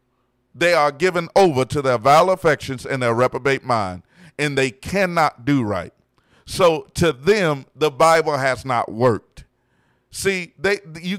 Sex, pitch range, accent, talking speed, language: male, 145-200 Hz, American, 145 wpm, English